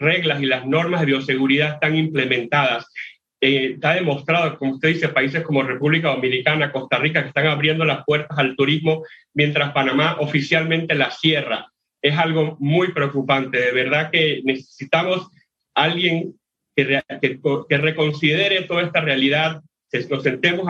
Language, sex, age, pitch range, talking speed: Spanish, male, 30-49, 135-160 Hz, 150 wpm